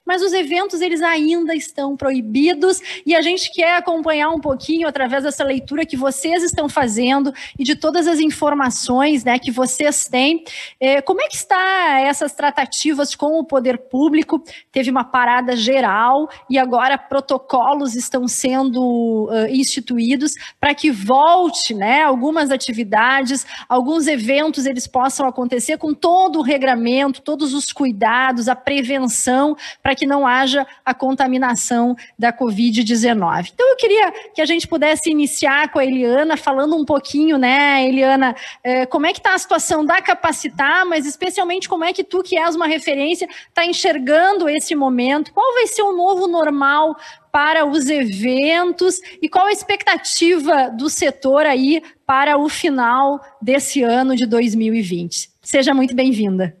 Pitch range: 260-325 Hz